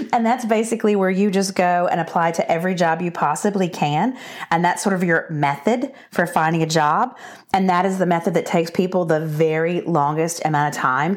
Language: English